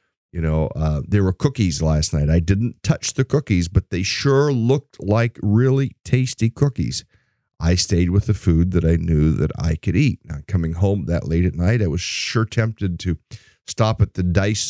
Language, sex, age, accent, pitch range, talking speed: English, male, 50-69, American, 85-105 Hz, 200 wpm